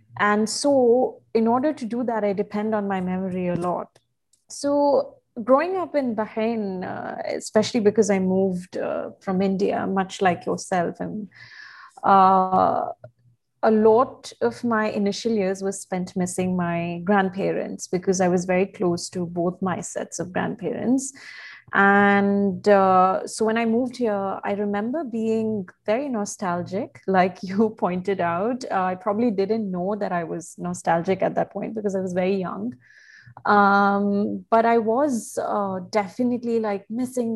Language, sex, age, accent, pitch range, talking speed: English, female, 30-49, Indian, 190-225 Hz, 155 wpm